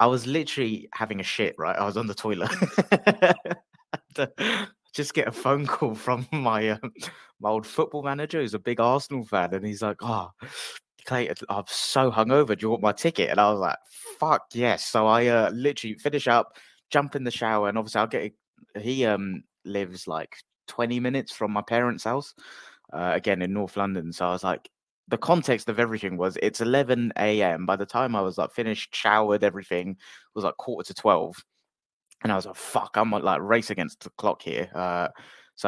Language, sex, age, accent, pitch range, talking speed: English, male, 20-39, British, 100-120 Hz, 200 wpm